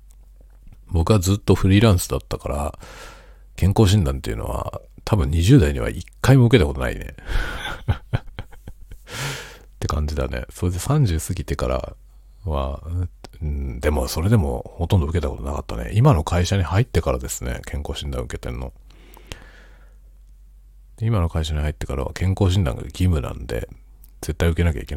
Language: Japanese